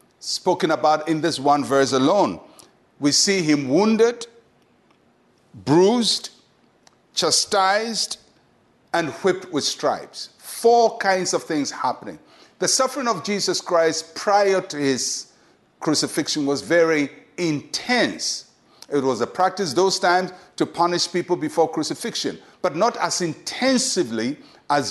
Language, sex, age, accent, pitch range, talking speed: English, male, 50-69, Nigerian, 145-205 Hz, 120 wpm